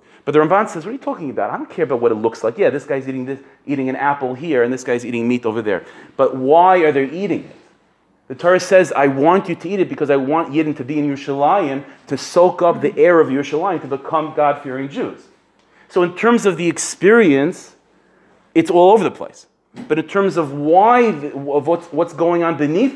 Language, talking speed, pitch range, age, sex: English, 230 wpm, 145-180 Hz, 30-49, male